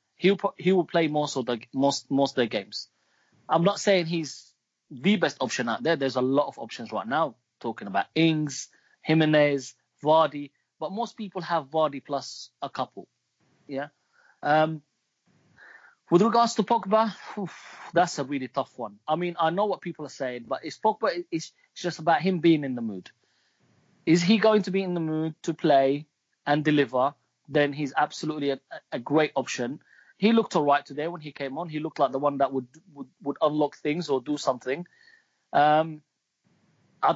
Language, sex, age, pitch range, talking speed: English, male, 30-49, 135-170 Hz, 180 wpm